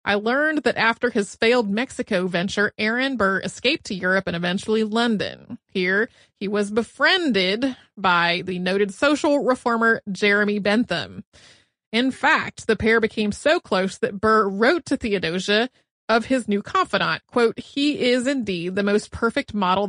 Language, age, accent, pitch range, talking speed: English, 30-49, American, 205-275 Hz, 155 wpm